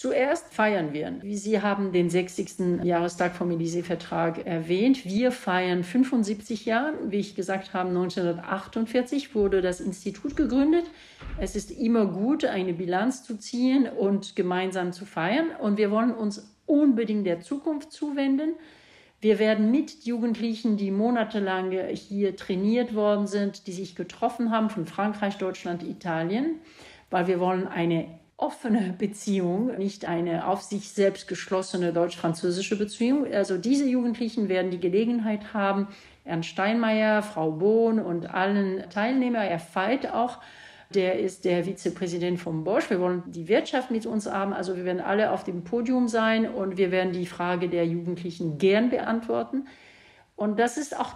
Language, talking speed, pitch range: German, 150 wpm, 180-230 Hz